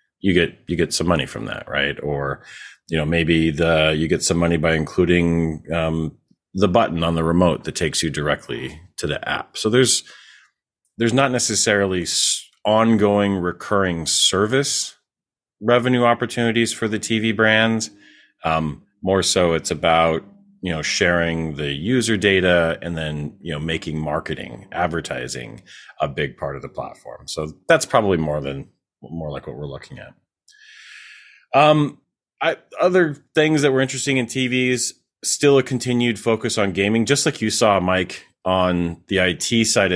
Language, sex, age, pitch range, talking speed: English, male, 30-49, 80-115 Hz, 160 wpm